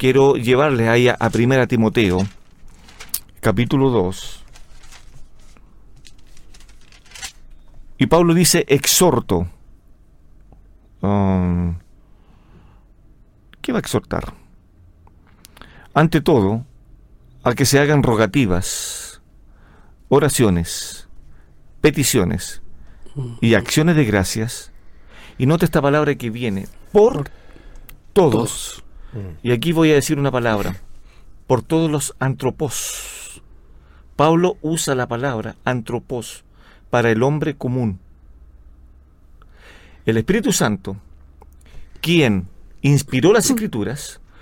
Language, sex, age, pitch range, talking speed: Spanish, male, 50-69, 95-150 Hz, 90 wpm